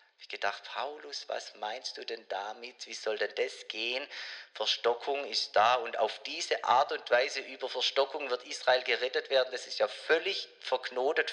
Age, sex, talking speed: 30-49, male, 180 wpm